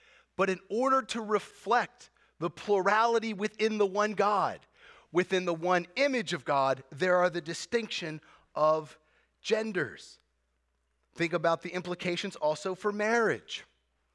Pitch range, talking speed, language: 155-215 Hz, 125 wpm, English